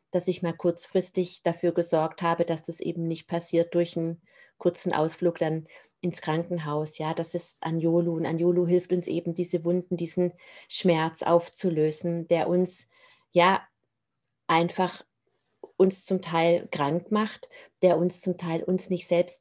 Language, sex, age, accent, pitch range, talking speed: German, female, 30-49, German, 165-180 Hz, 150 wpm